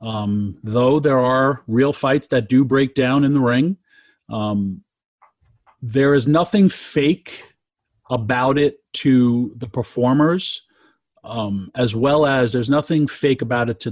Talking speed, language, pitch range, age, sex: 140 wpm, English, 115-150 Hz, 40-59, male